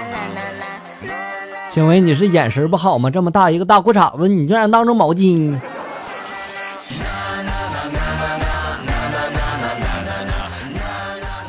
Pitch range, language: 130-210 Hz, Chinese